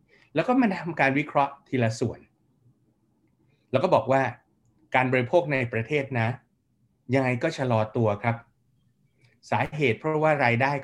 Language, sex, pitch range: Thai, male, 115-135 Hz